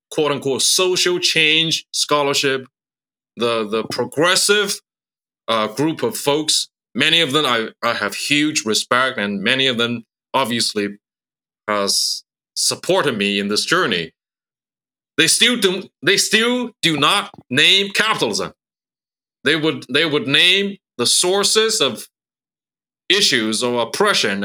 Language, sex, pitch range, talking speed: English, male, 125-175 Hz, 125 wpm